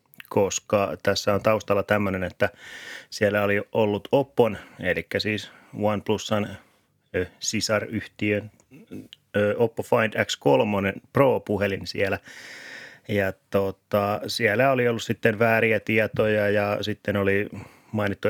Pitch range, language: 100-110 Hz, Finnish